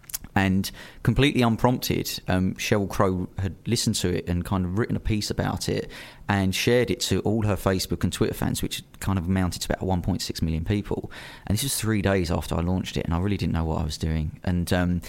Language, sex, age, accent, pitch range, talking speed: English, male, 30-49, British, 90-105 Hz, 225 wpm